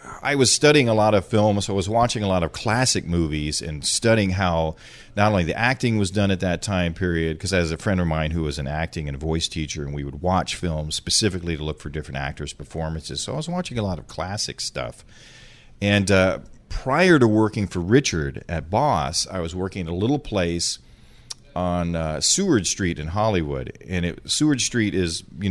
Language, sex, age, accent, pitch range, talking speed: English, male, 40-59, American, 80-105 Hz, 220 wpm